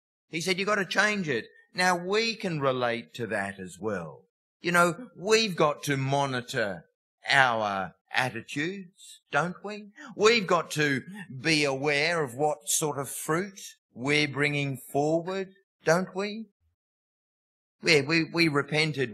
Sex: male